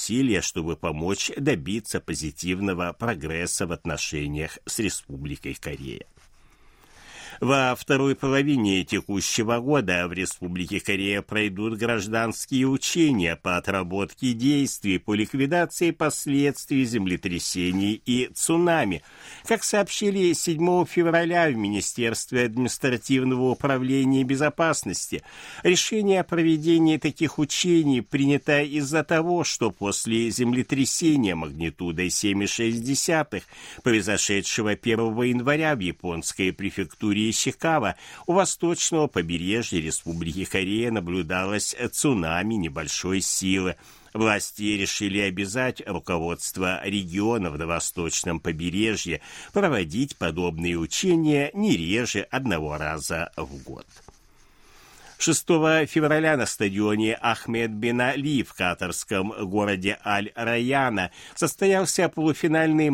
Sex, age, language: male, 60-79, Russian